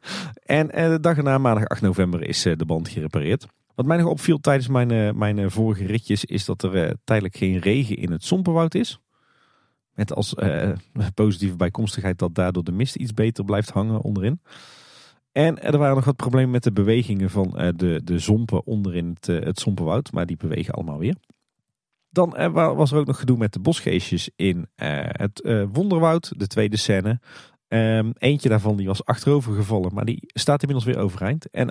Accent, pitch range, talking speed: Dutch, 95-135 Hz, 190 wpm